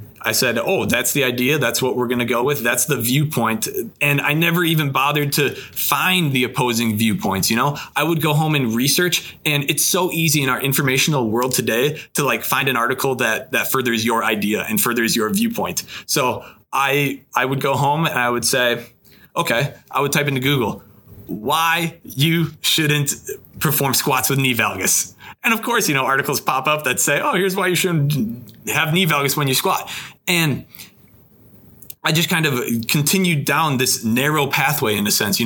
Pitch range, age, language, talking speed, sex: 120-155 Hz, 30-49, English, 195 wpm, male